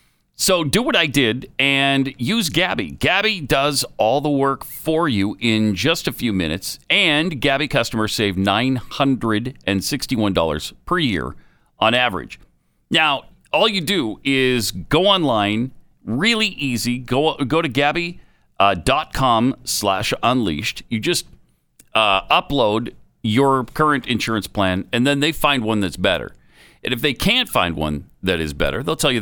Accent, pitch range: American, 100-140 Hz